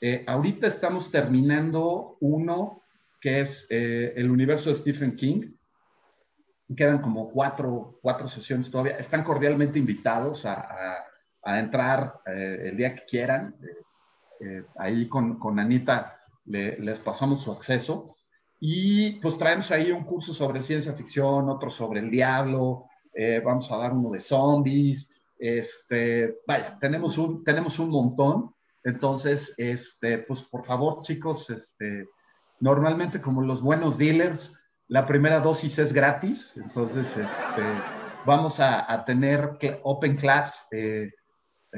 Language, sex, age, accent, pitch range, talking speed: Spanish, male, 40-59, Mexican, 120-150 Hz, 140 wpm